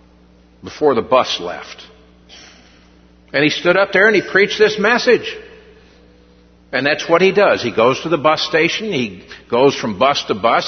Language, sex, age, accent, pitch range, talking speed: English, male, 60-79, American, 100-165 Hz, 175 wpm